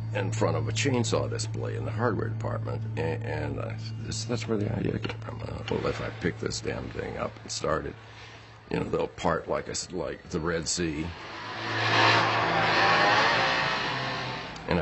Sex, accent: male, American